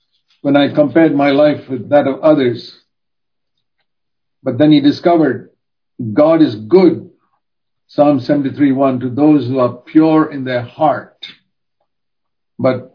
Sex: male